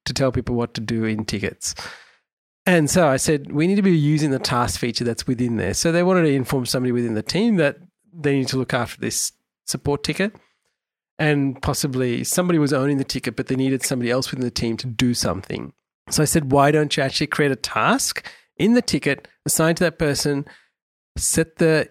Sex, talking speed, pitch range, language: male, 215 wpm, 125-155 Hz, English